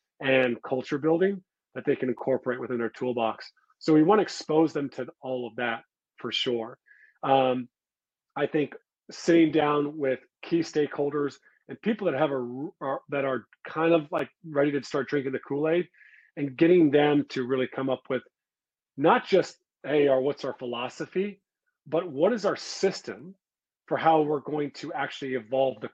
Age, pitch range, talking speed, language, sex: 40-59, 130-160 Hz, 170 wpm, English, male